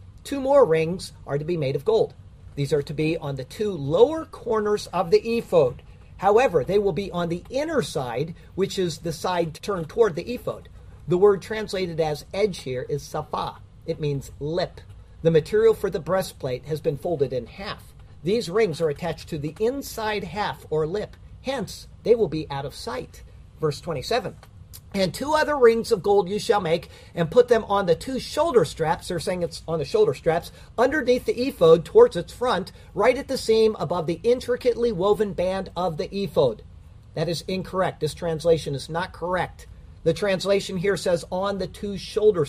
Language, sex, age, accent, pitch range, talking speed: English, male, 50-69, American, 155-220 Hz, 190 wpm